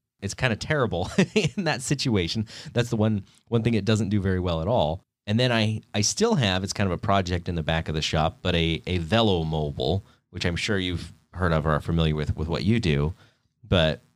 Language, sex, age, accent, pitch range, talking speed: English, male, 30-49, American, 85-110 Hz, 235 wpm